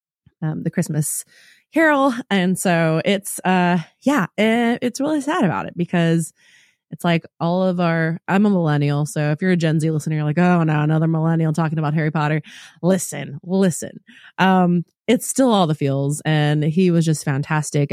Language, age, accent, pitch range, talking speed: English, 20-39, American, 155-190 Hz, 180 wpm